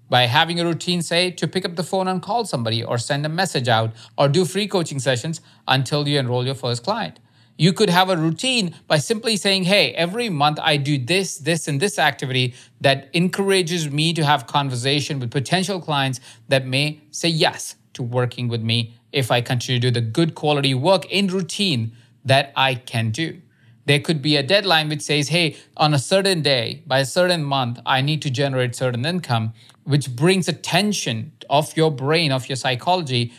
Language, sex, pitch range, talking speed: English, male, 125-165 Hz, 200 wpm